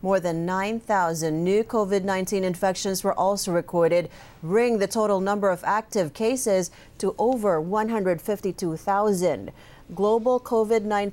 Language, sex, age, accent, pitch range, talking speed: English, female, 40-59, American, 180-230 Hz, 115 wpm